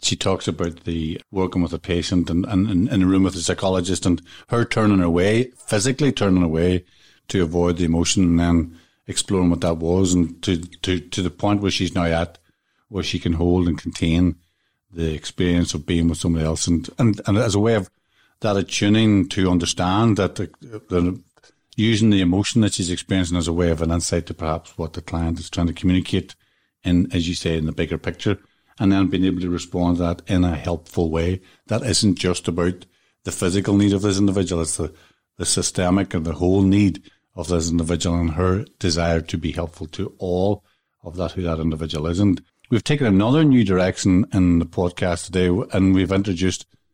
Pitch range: 85-100 Hz